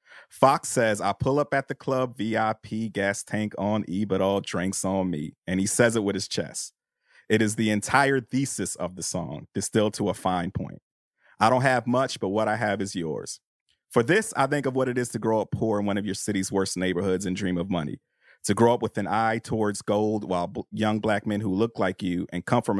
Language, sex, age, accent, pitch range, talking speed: English, male, 30-49, American, 95-125 Hz, 235 wpm